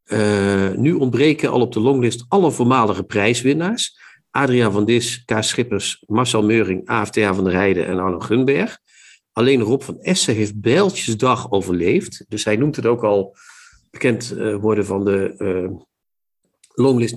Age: 50-69